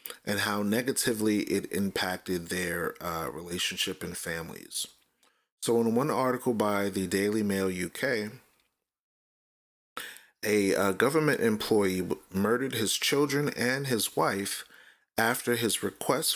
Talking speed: 115 wpm